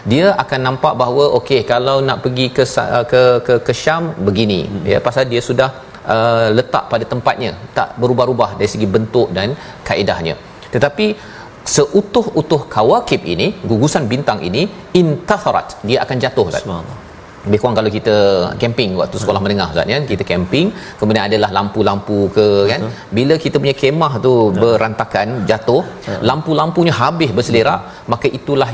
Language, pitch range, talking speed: Malayalam, 105-140 Hz, 150 wpm